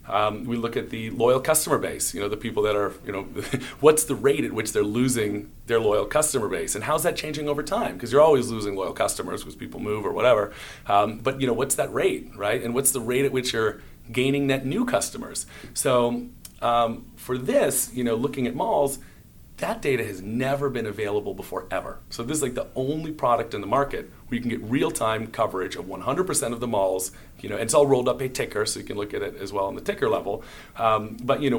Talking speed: 240 wpm